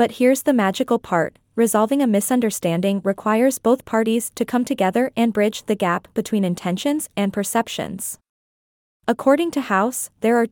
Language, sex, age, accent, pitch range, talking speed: English, female, 20-39, American, 200-255 Hz, 155 wpm